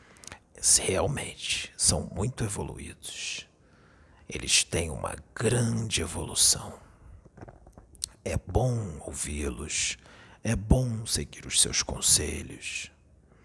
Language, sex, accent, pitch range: Portuguese, male, Brazilian, 80-105 Hz